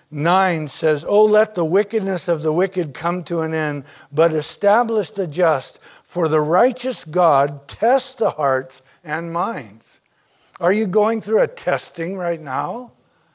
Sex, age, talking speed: male, 60-79, 155 wpm